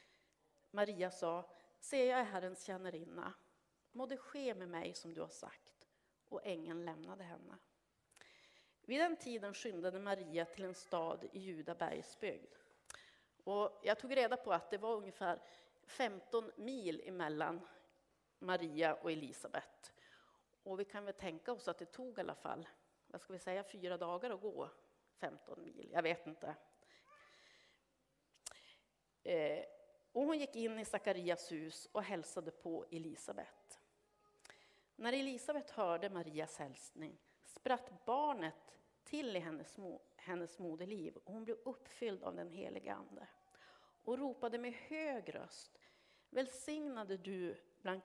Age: 40-59